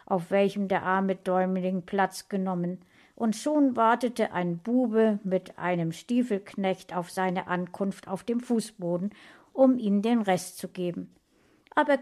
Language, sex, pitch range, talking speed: German, female, 180-230 Hz, 140 wpm